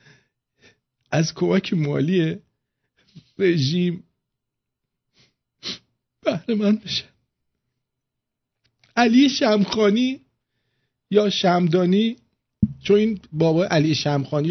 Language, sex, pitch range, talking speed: English, male, 110-150 Hz, 65 wpm